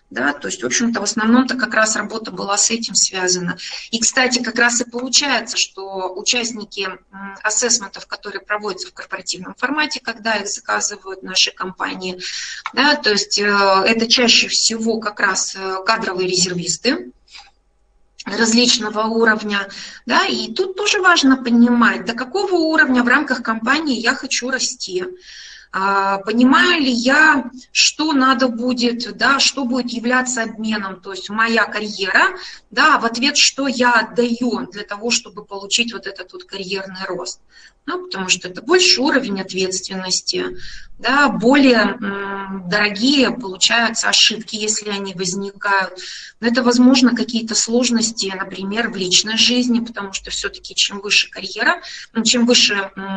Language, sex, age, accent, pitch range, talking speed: Russian, female, 30-49, native, 200-255 Hz, 140 wpm